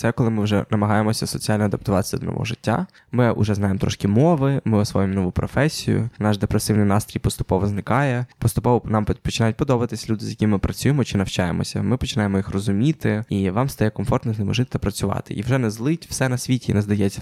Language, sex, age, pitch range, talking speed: Ukrainian, male, 20-39, 100-125 Hz, 200 wpm